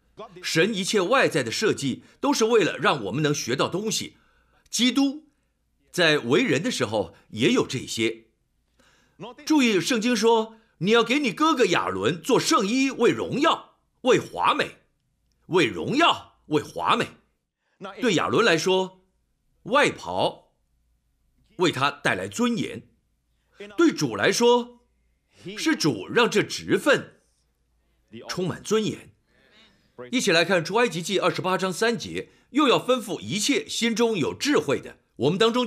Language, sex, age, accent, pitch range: Chinese, male, 50-69, native, 150-235 Hz